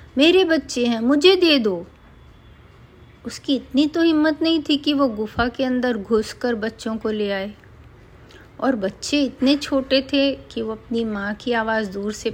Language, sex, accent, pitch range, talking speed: Hindi, female, native, 215-285 Hz, 170 wpm